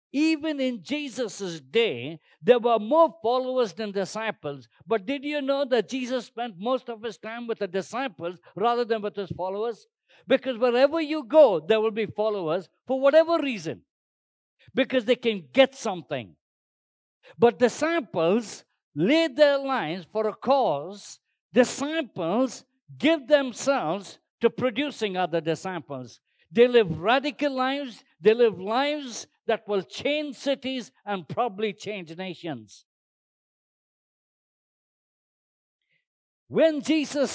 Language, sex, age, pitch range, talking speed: English, male, 50-69, 190-265 Hz, 125 wpm